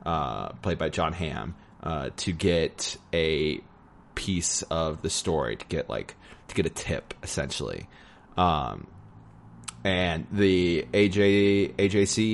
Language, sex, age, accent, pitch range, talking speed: English, male, 30-49, American, 80-100 Hz, 125 wpm